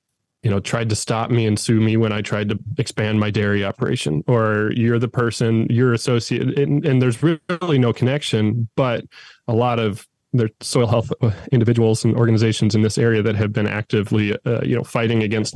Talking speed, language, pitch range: 195 wpm, English, 110-120 Hz